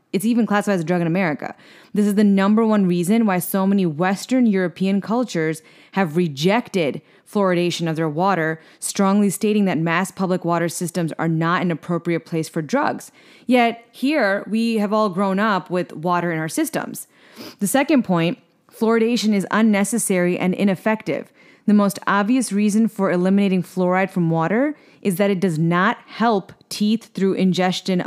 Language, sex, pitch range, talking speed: English, female, 175-210 Hz, 165 wpm